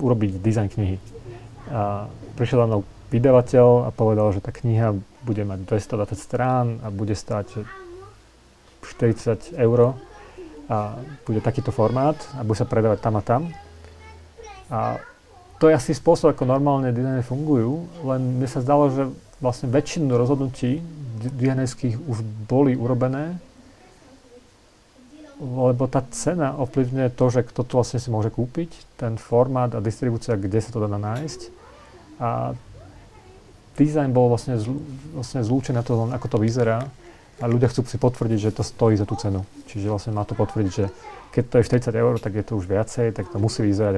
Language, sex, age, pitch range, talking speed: Slovak, male, 40-59, 110-135 Hz, 160 wpm